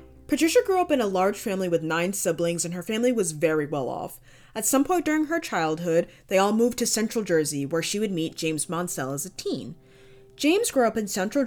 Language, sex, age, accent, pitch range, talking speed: English, female, 20-39, American, 170-245 Hz, 225 wpm